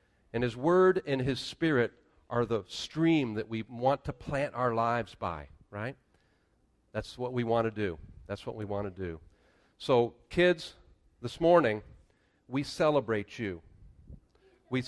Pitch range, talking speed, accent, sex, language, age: 110-160 Hz, 155 wpm, American, male, English, 40-59